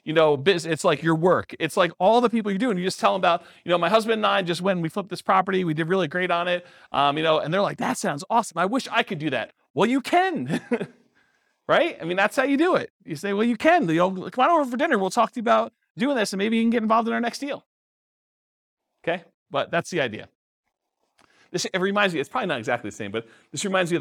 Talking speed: 280 wpm